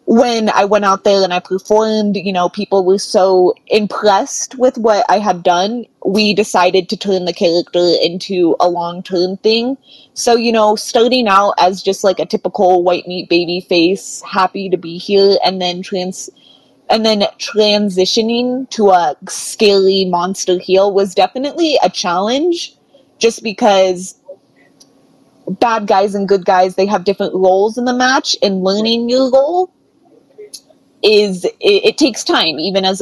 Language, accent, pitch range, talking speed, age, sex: English, American, 185-225 Hz, 160 wpm, 20-39, female